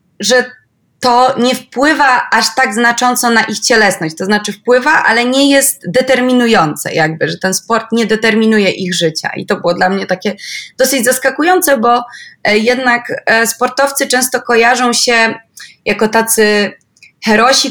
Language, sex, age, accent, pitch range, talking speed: Polish, female, 20-39, native, 200-250 Hz, 140 wpm